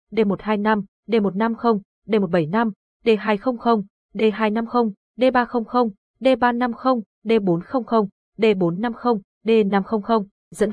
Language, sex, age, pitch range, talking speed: Vietnamese, female, 20-39, 190-240 Hz, 75 wpm